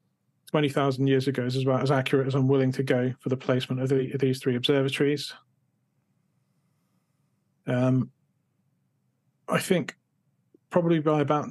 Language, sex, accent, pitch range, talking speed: English, male, British, 130-150 Hz, 135 wpm